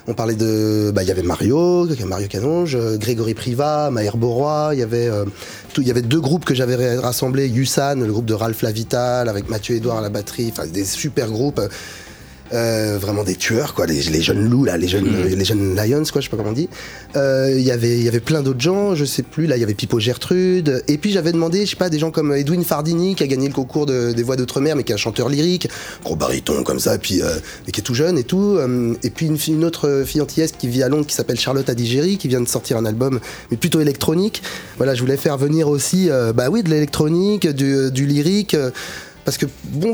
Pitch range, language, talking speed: 120-165 Hz, French, 250 wpm